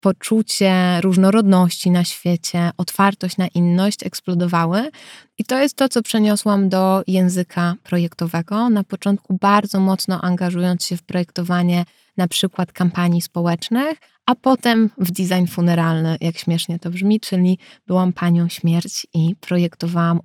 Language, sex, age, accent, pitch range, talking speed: Polish, female, 20-39, native, 175-200 Hz, 130 wpm